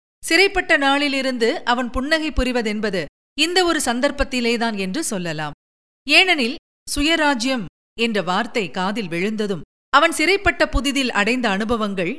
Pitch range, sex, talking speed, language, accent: 205-280 Hz, female, 105 wpm, Tamil, native